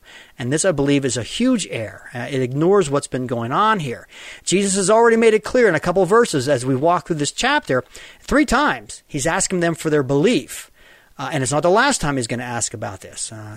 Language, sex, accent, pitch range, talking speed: English, male, American, 135-195 Hz, 245 wpm